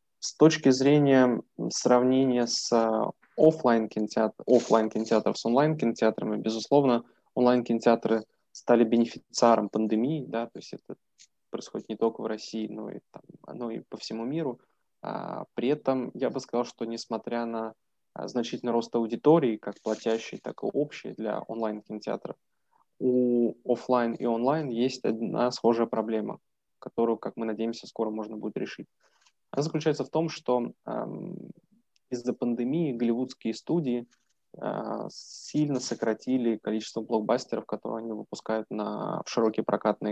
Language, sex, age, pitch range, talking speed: Russian, male, 20-39, 110-130 Hz, 135 wpm